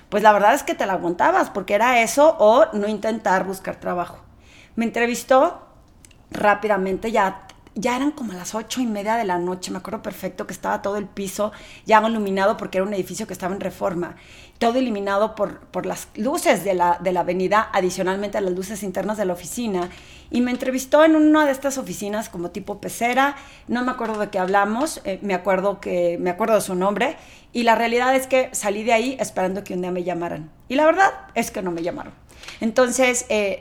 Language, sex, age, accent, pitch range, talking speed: Spanish, female, 40-59, Mexican, 190-230 Hz, 210 wpm